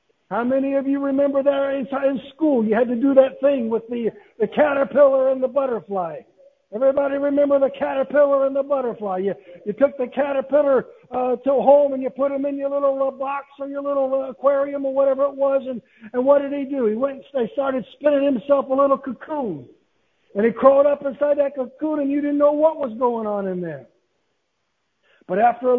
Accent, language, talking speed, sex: American, English, 205 wpm, male